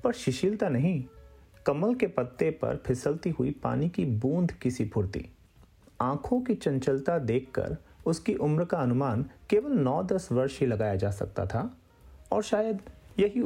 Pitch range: 105-165 Hz